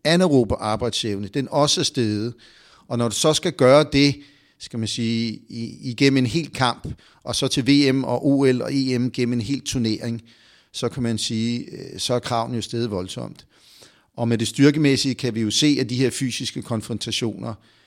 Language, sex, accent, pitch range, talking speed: Danish, male, native, 115-140 Hz, 185 wpm